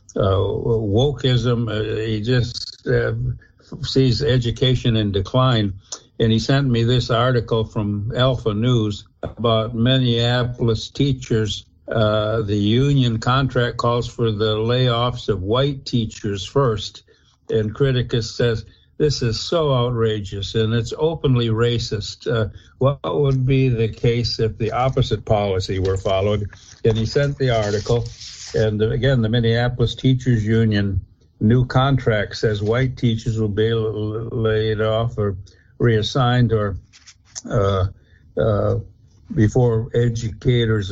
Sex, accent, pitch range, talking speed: male, American, 105-125 Hz, 125 wpm